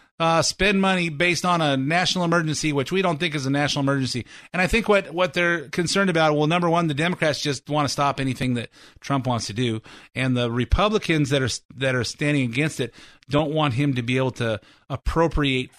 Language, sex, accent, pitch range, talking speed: English, male, American, 120-160 Hz, 215 wpm